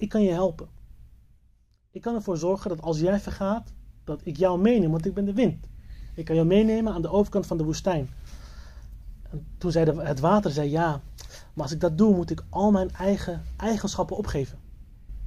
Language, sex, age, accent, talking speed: Dutch, male, 30-49, Dutch, 195 wpm